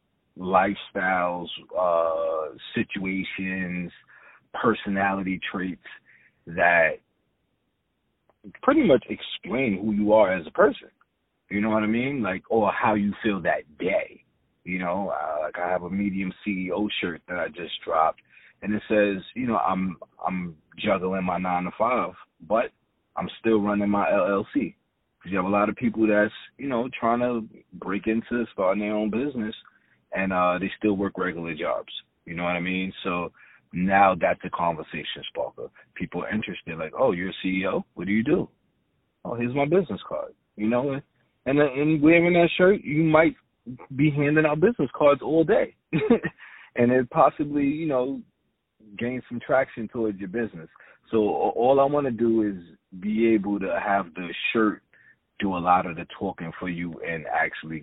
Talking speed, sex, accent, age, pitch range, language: 170 wpm, male, American, 30-49, 90-120 Hz, English